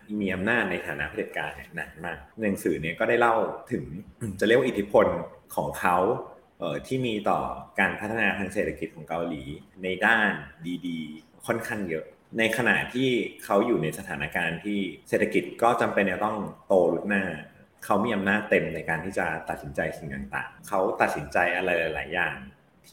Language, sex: Thai, male